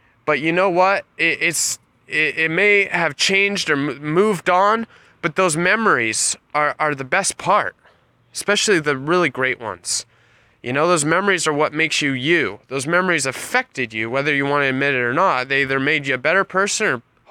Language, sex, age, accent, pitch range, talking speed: English, male, 20-39, American, 135-195 Hz, 190 wpm